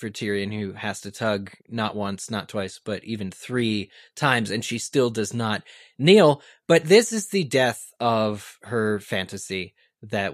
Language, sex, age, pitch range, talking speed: English, male, 20-39, 105-135 Hz, 170 wpm